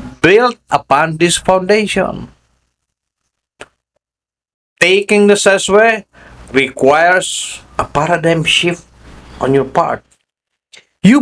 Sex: male